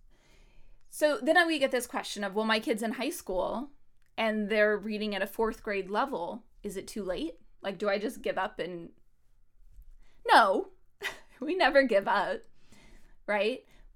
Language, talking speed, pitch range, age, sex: English, 165 wpm, 205-255 Hz, 20-39, female